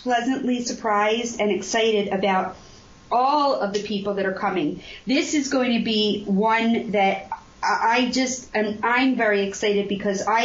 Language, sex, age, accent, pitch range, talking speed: English, female, 40-59, American, 195-235 Hz, 155 wpm